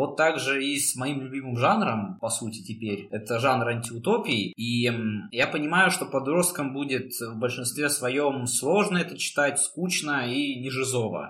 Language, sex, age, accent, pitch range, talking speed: Russian, male, 20-39, native, 115-140 Hz, 155 wpm